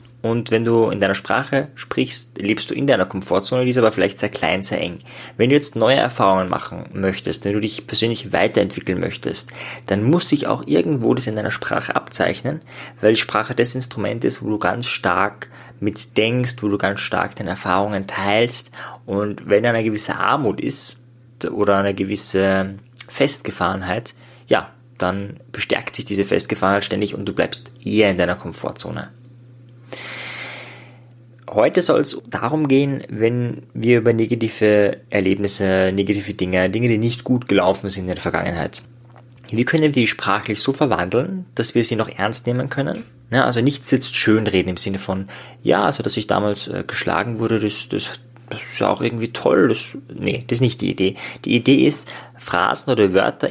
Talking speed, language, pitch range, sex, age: 175 wpm, German, 100-125 Hz, male, 20-39